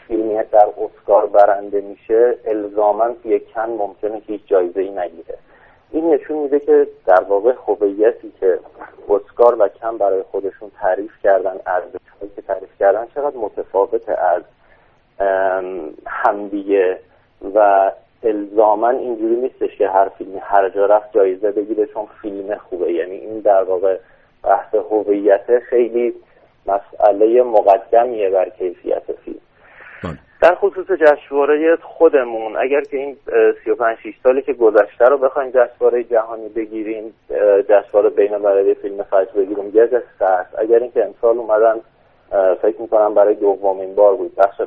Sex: male